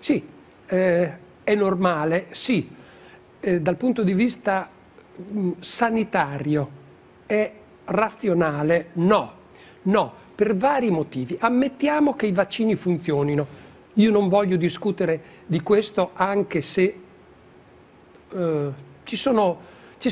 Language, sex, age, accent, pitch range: Japanese, male, 60-79, Italian, 160-220 Hz